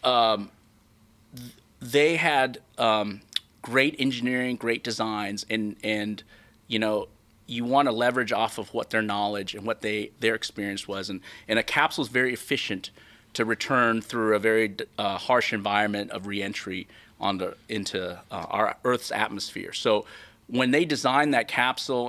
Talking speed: 155 wpm